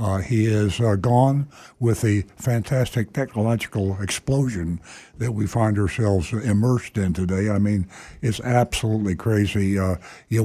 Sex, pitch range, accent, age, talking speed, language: male, 100-130 Hz, American, 60-79, 140 wpm, English